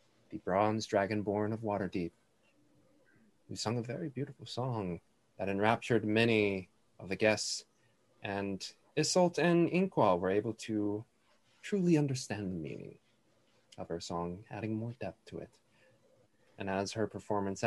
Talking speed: 135 wpm